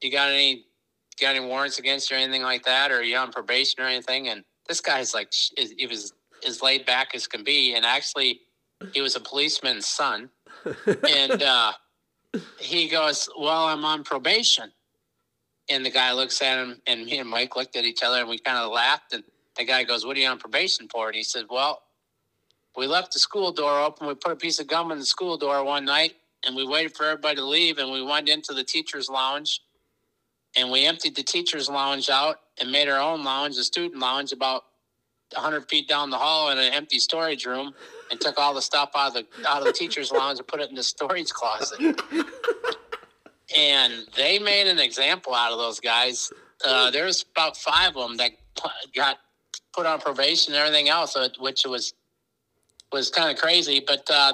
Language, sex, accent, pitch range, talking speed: English, male, American, 130-155 Hz, 210 wpm